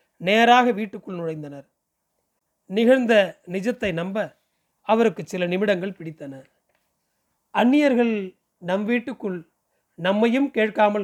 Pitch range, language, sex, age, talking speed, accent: 185-225 Hz, Tamil, male, 40-59, 80 wpm, native